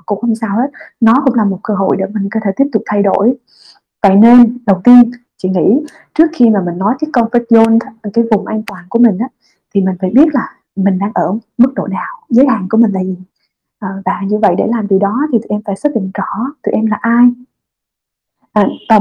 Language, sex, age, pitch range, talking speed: Vietnamese, female, 20-39, 205-255 Hz, 235 wpm